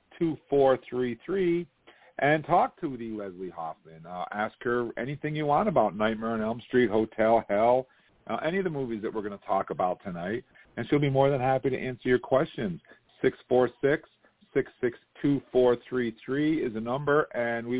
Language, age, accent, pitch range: English, 50-69, American, 105-130 Hz